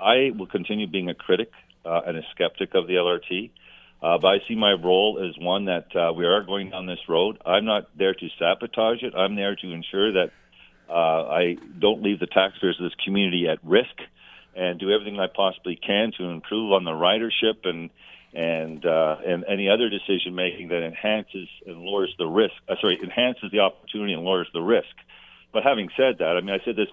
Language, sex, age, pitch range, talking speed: English, male, 50-69, 85-105 Hz, 205 wpm